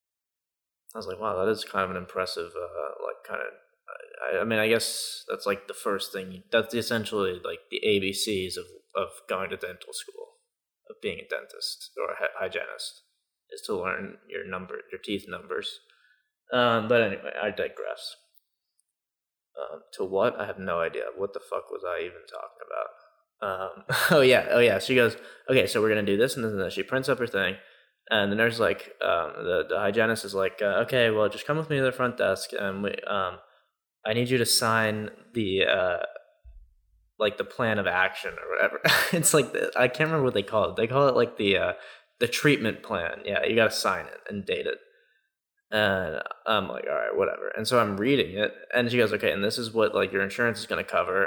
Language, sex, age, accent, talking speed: English, male, 20-39, American, 215 wpm